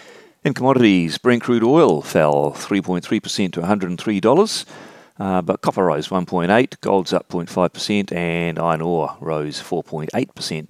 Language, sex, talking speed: English, male, 125 wpm